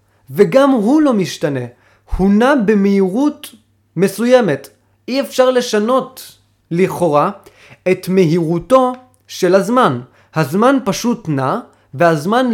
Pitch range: 155-225 Hz